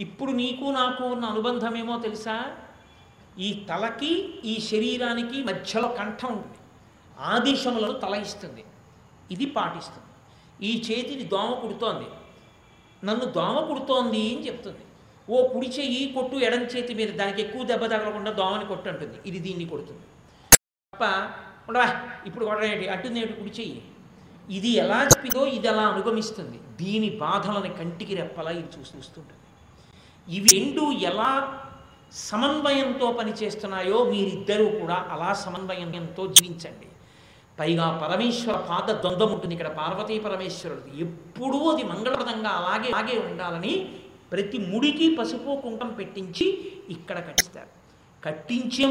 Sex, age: male, 50-69